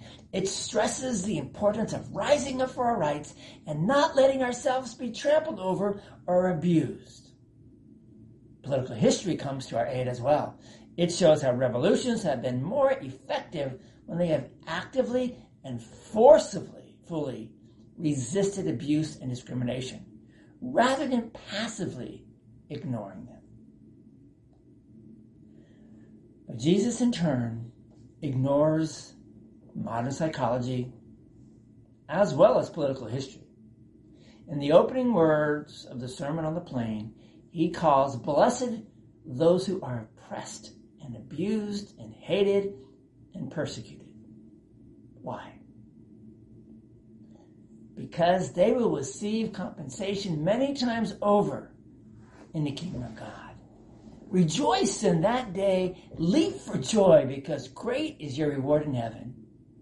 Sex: male